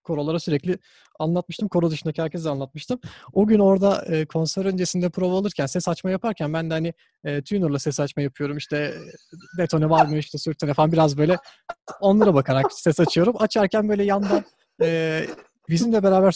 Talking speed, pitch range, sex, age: 160 wpm, 160-205 Hz, male, 30-49